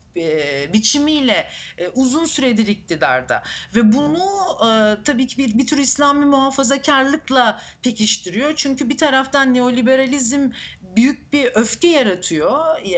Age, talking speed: 50-69, 100 wpm